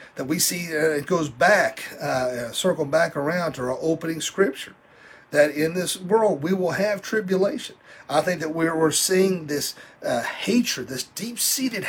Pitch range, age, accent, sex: 160-205 Hz, 40-59, American, male